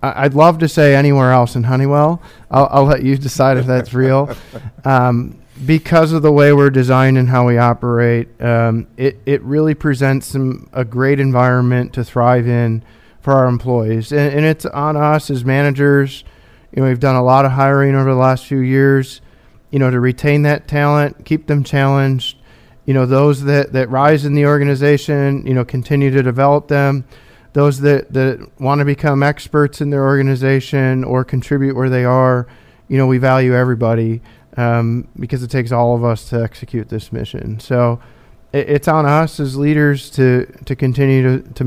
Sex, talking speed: male, 185 wpm